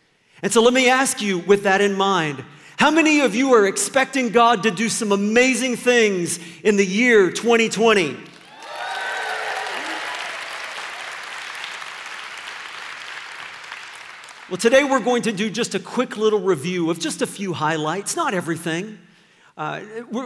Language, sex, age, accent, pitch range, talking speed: English, male, 40-59, American, 160-225 Hz, 135 wpm